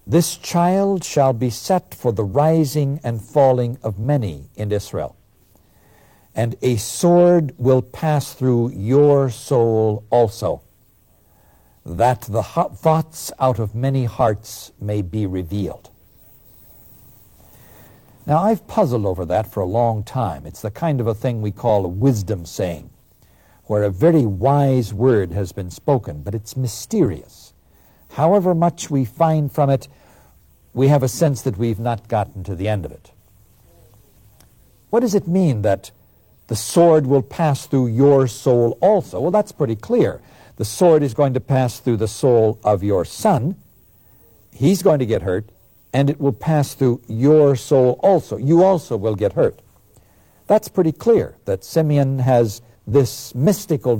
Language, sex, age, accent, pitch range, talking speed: English, male, 60-79, American, 105-145 Hz, 155 wpm